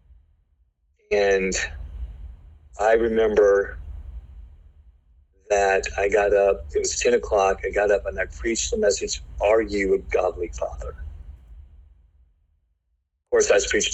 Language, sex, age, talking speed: English, male, 40-59, 125 wpm